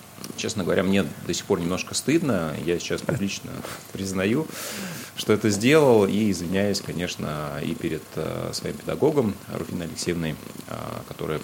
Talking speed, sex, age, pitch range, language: 130 wpm, male, 30-49, 85-110 Hz, Russian